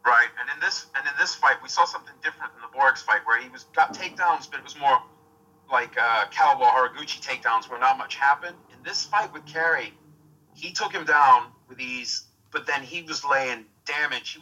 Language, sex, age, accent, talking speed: English, male, 30-49, American, 215 wpm